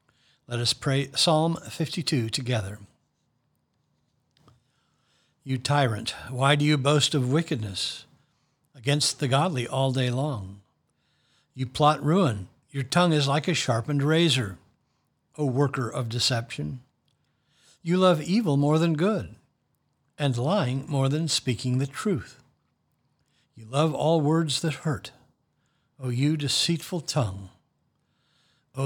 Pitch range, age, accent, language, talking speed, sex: 125-155 Hz, 60-79, American, English, 120 wpm, male